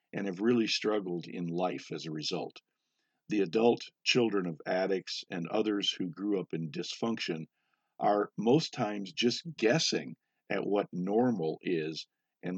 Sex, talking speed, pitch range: male, 150 wpm, 85-110 Hz